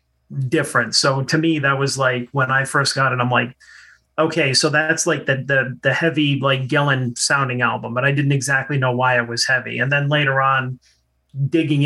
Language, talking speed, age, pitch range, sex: English, 205 wpm, 30-49, 125-150 Hz, male